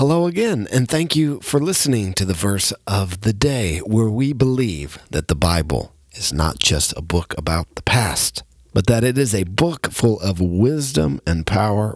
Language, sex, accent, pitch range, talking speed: English, male, American, 85-115 Hz, 190 wpm